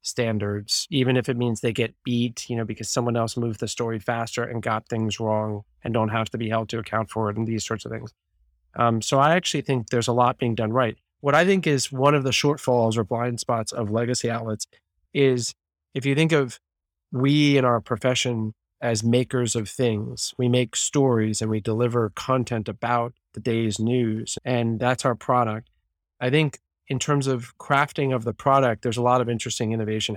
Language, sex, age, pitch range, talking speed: English, male, 30-49, 115-135 Hz, 205 wpm